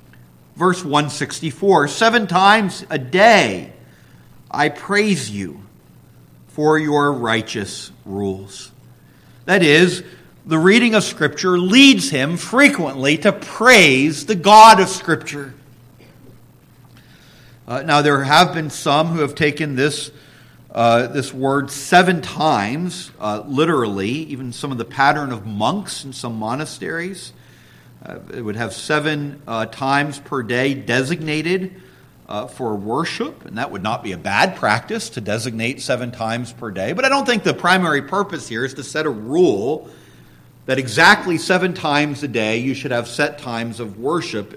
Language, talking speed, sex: English, 145 wpm, male